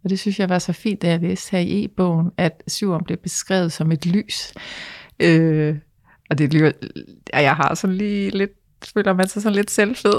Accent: native